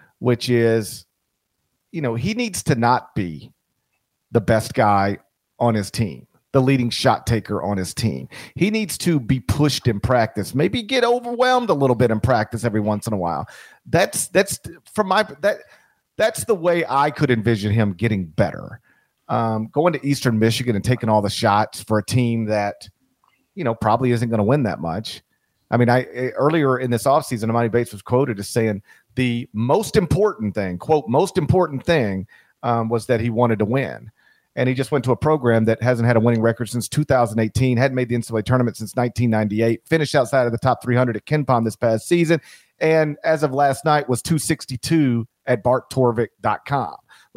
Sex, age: male, 40-59